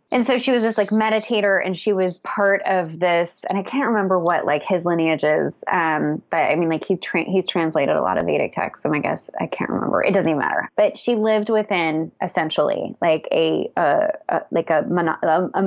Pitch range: 165-200 Hz